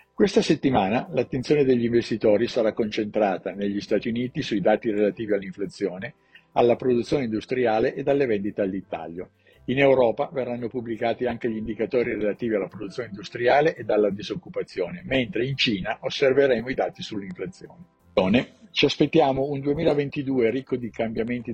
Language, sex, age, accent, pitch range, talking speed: Italian, male, 50-69, native, 105-135 Hz, 135 wpm